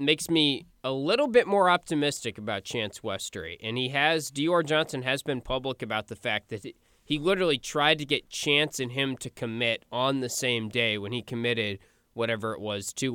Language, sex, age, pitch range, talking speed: English, male, 20-39, 115-145 Hz, 195 wpm